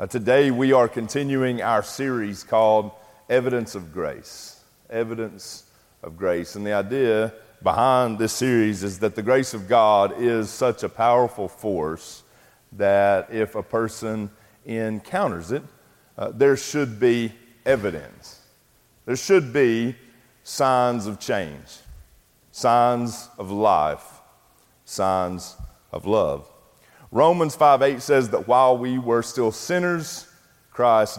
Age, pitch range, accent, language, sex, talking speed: 40-59, 100-130 Hz, American, English, male, 125 wpm